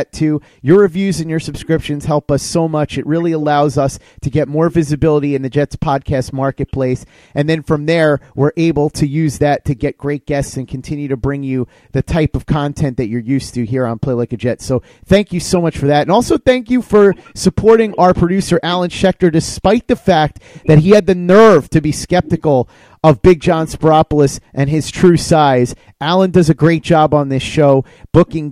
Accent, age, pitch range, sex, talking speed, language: American, 30-49, 140-170 Hz, male, 210 wpm, English